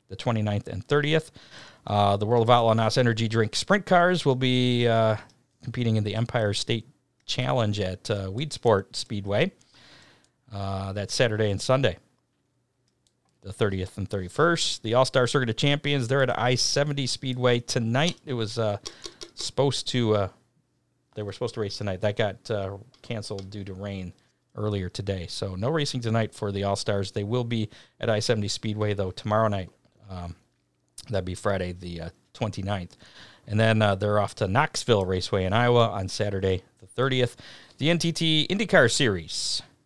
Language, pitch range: English, 105-130 Hz